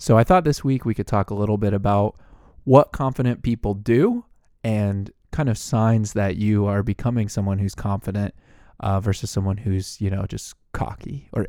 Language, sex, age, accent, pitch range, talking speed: English, male, 20-39, American, 100-130 Hz, 190 wpm